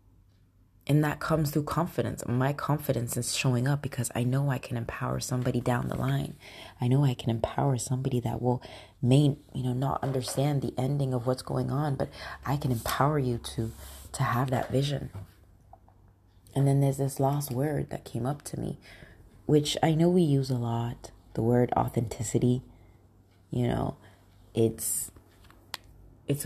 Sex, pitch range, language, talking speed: female, 105-145 Hz, English, 170 wpm